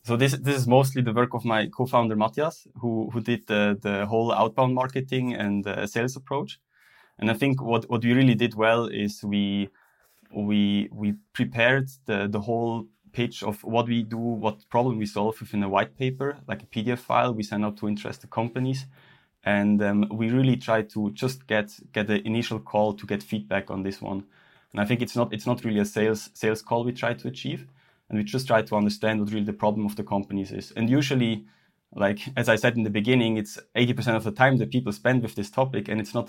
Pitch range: 105-120 Hz